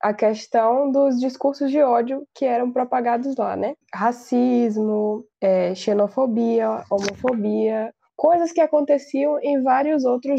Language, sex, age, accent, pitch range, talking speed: Portuguese, female, 10-29, Brazilian, 230-285 Hz, 115 wpm